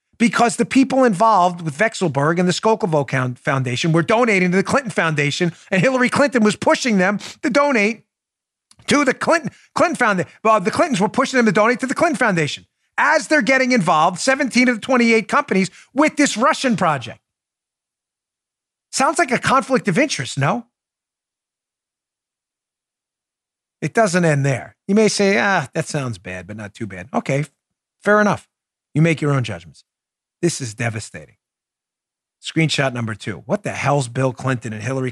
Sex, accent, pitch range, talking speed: male, American, 135-210 Hz, 165 wpm